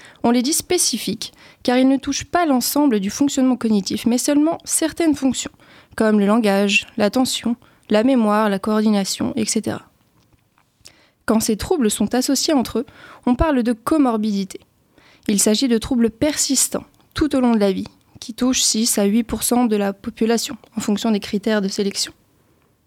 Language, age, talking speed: French, 20-39, 165 wpm